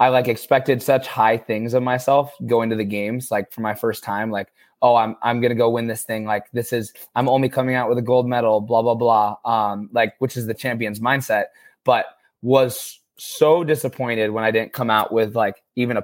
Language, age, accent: English, 20-39, American